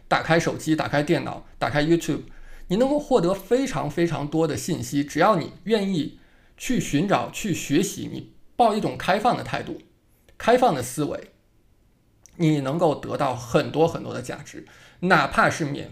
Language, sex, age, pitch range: Chinese, male, 20-39, 150-210 Hz